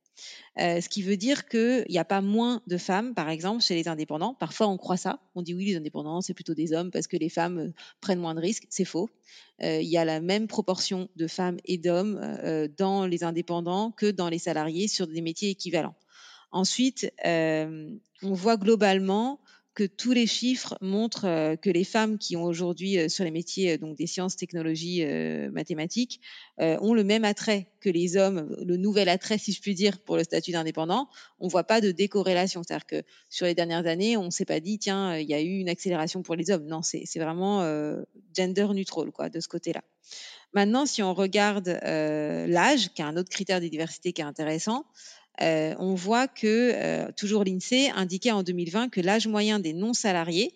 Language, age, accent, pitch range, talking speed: French, 40-59, French, 170-210 Hz, 205 wpm